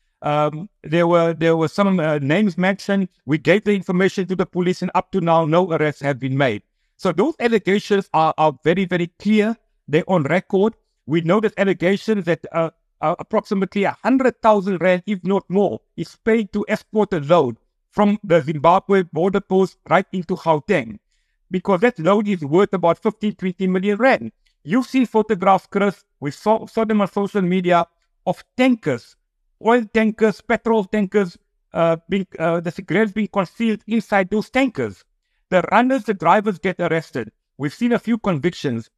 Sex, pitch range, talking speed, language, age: male, 170-215 Hz, 175 wpm, English, 60-79